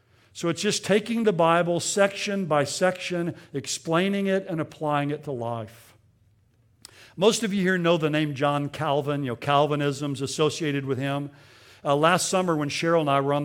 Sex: male